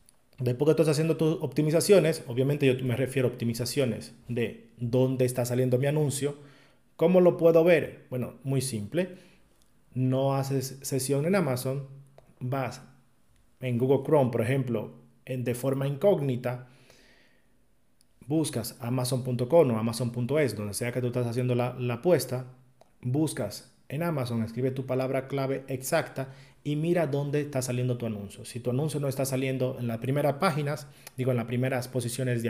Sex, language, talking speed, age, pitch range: male, Spanish, 155 wpm, 30-49, 120-145 Hz